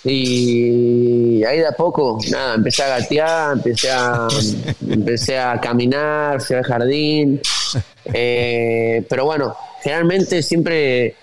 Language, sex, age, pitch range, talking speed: Spanish, male, 20-39, 115-130 Hz, 120 wpm